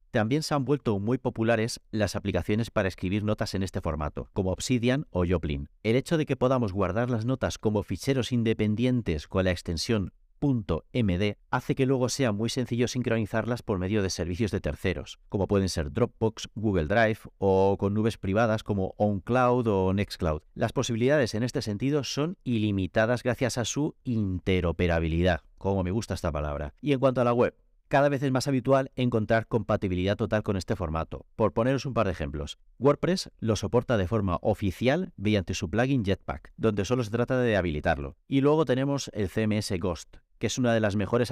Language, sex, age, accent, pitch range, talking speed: Spanish, male, 40-59, Spanish, 95-125 Hz, 185 wpm